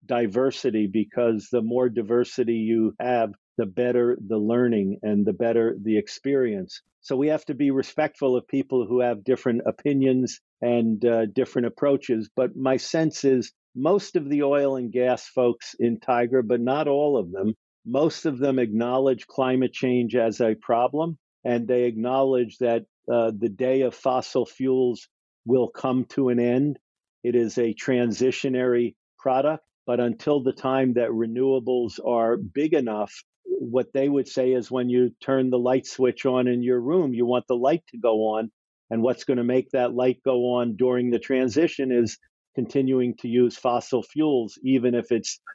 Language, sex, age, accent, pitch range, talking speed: English, male, 50-69, American, 120-135 Hz, 175 wpm